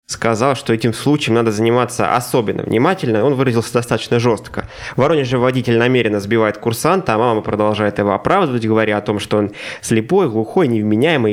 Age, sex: 20-39, male